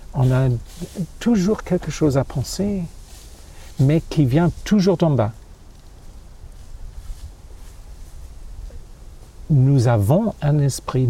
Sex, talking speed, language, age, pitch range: male, 90 wpm, French, 50-69, 100-145 Hz